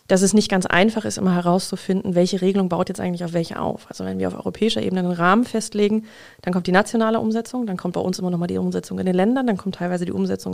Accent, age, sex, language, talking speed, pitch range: German, 30-49, female, German, 260 wpm, 180-210 Hz